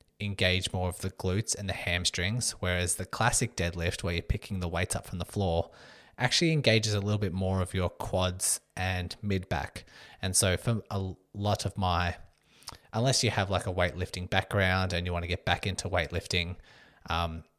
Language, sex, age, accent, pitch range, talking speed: English, male, 20-39, Australian, 90-105 Hz, 190 wpm